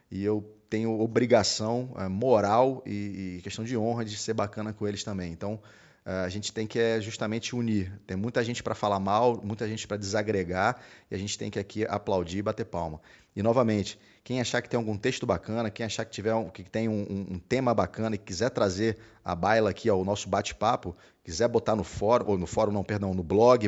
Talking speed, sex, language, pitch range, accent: 210 wpm, male, Portuguese, 100-130 Hz, Brazilian